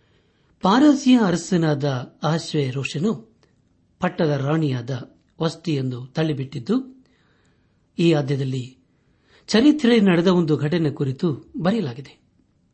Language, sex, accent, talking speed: Kannada, male, native, 75 wpm